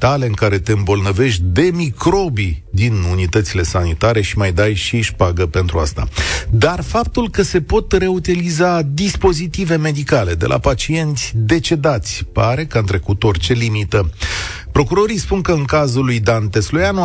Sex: male